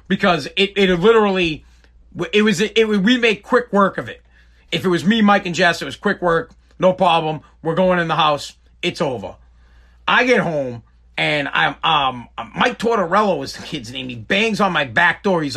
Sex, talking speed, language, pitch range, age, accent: male, 205 wpm, English, 170-235 Hz, 40-59, American